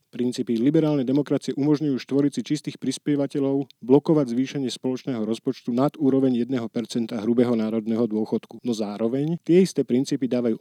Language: Slovak